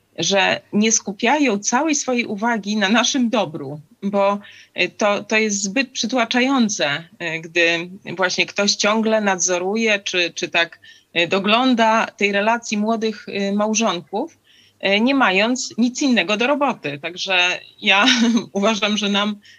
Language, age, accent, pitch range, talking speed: Polish, 30-49, native, 175-230 Hz, 120 wpm